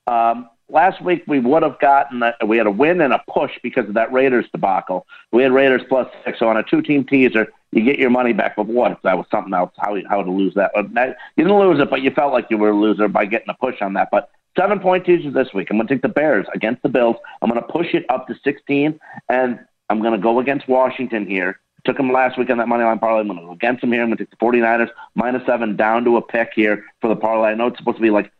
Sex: male